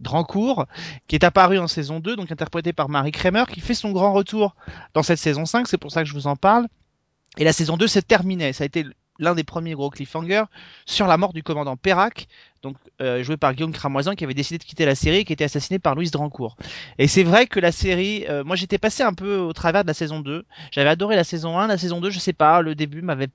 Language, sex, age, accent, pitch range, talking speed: French, male, 30-49, French, 145-185 Hz, 260 wpm